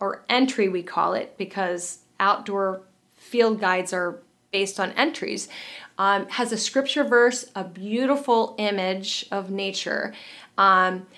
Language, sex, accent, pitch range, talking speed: English, female, American, 190-235 Hz, 130 wpm